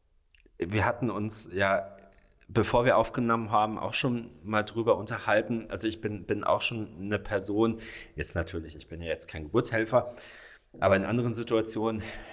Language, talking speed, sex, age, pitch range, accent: German, 160 wpm, male, 30-49, 100-120 Hz, German